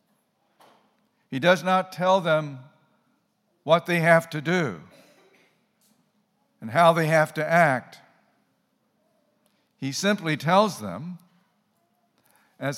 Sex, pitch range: male, 155-205 Hz